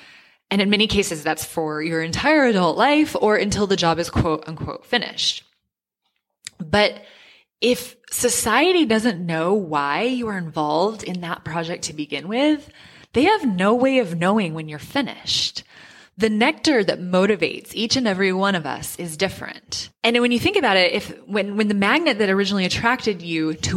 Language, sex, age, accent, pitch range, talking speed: English, female, 20-39, American, 165-230 Hz, 175 wpm